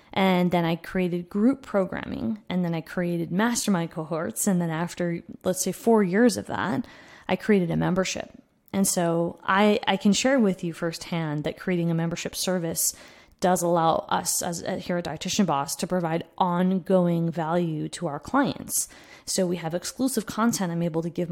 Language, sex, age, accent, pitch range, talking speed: English, female, 20-39, American, 165-195 Hz, 175 wpm